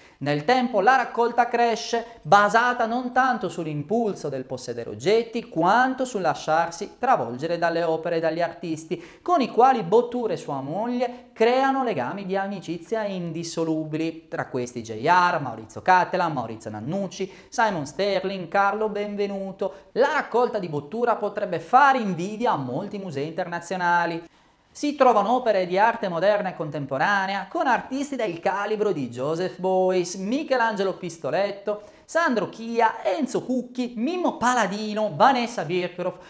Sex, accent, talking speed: male, native, 130 wpm